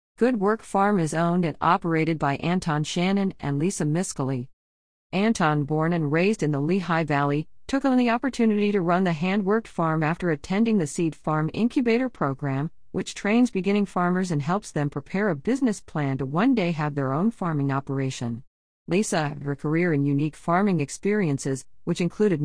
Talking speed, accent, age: 175 wpm, American, 40-59